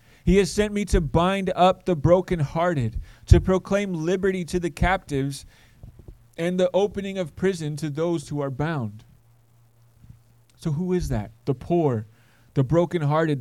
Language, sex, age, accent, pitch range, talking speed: English, male, 30-49, American, 115-170 Hz, 150 wpm